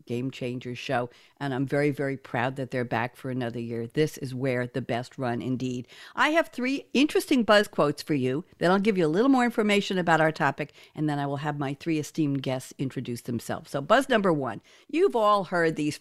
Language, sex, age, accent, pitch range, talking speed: English, female, 60-79, American, 140-195 Hz, 220 wpm